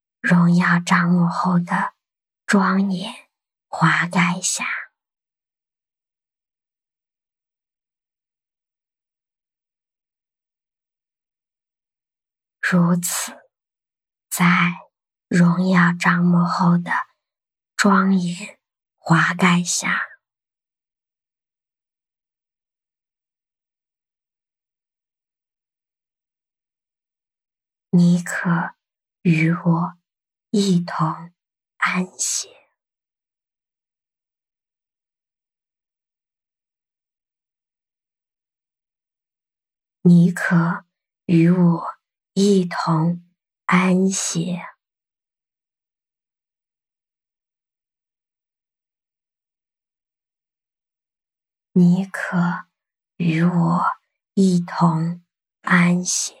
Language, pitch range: English, 170-185 Hz